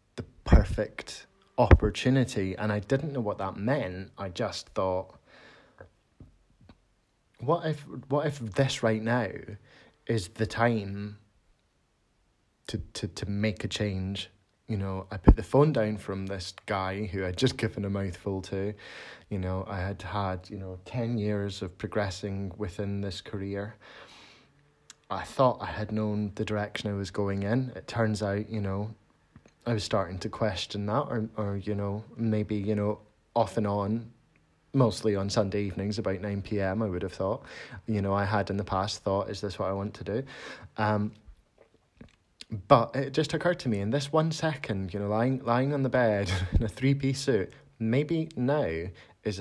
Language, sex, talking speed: English, male, 170 wpm